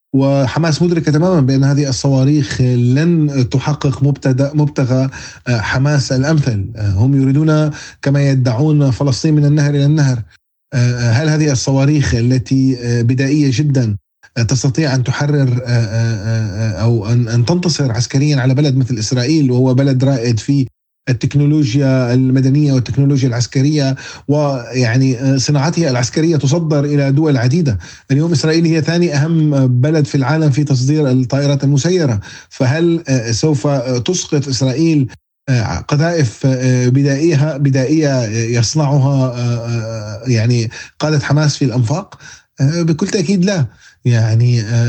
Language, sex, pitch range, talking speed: Arabic, male, 125-155 Hz, 110 wpm